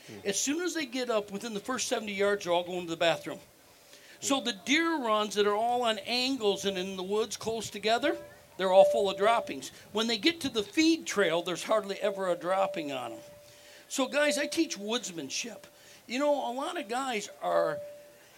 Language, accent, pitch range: English, American, 200-260 Hz